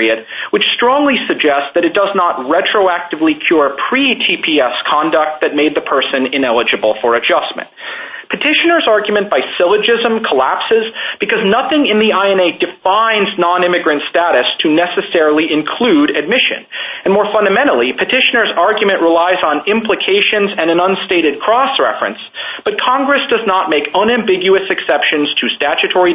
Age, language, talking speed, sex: 40-59, English, 130 wpm, male